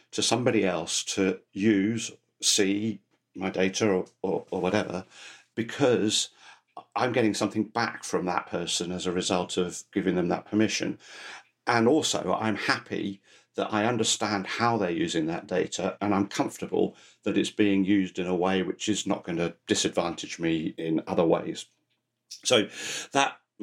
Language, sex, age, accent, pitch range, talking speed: English, male, 50-69, British, 90-110 Hz, 155 wpm